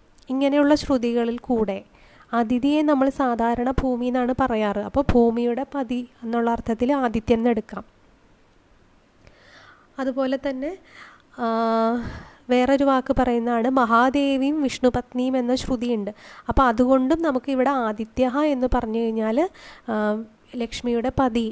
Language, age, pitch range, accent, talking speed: Malayalam, 20-39, 225-270 Hz, native, 95 wpm